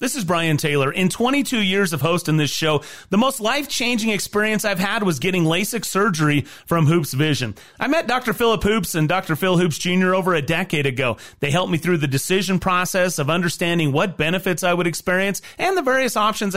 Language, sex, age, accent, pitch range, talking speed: English, male, 30-49, American, 150-220 Hz, 205 wpm